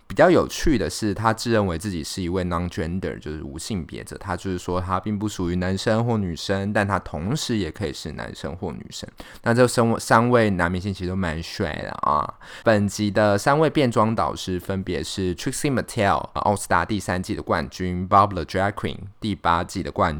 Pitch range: 85-110 Hz